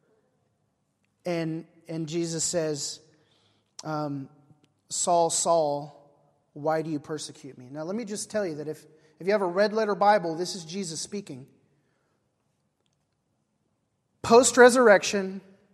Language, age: English, 30-49